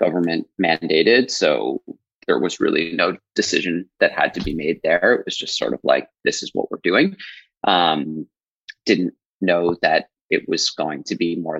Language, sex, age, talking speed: English, male, 30-49, 180 wpm